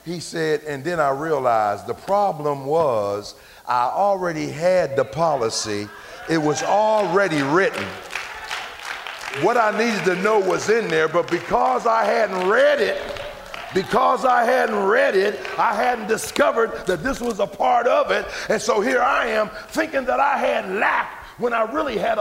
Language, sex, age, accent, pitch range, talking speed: English, male, 50-69, American, 150-250 Hz, 165 wpm